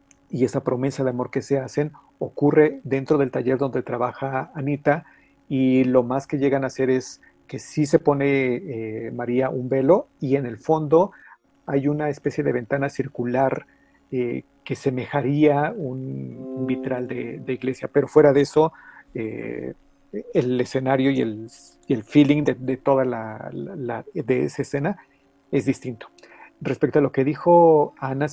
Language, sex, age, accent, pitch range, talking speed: Spanish, male, 40-59, Mexican, 125-150 Hz, 165 wpm